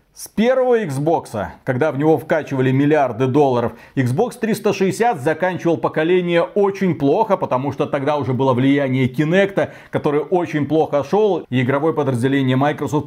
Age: 30-49